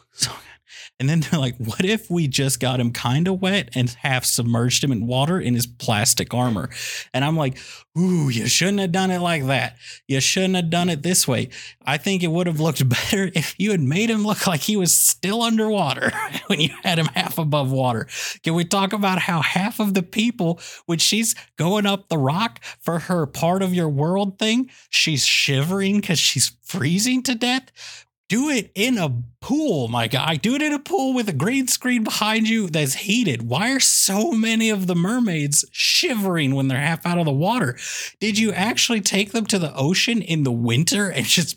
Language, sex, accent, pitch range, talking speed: English, male, American, 135-200 Hz, 205 wpm